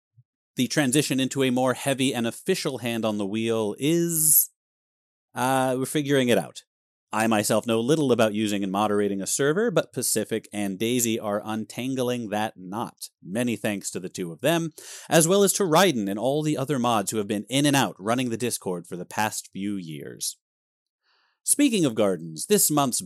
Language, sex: English, male